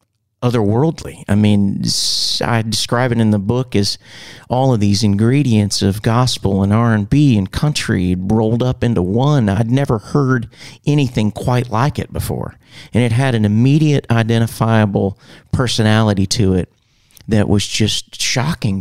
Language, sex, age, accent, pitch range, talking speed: English, male, 40-59, American, 105-130 Hz, 150 wpm